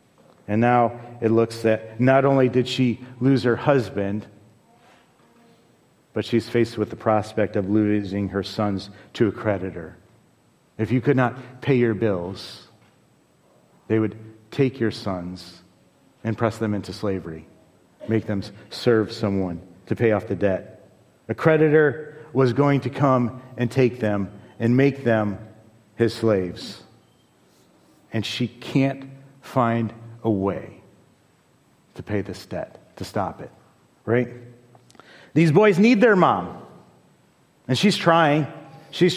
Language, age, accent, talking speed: English, 40-59, American, 135 wpm